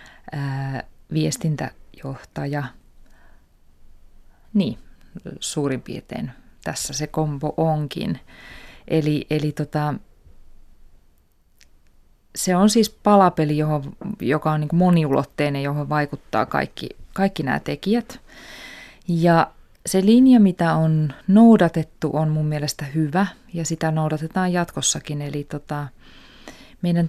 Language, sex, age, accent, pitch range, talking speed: Finnish, female, 20-39, native, 140-175 Hz, 95 wpm